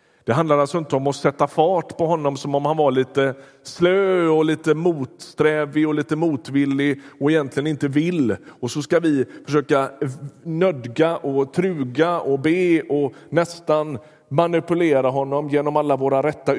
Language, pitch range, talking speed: Swedish, 125-155 Hz, 160 wpm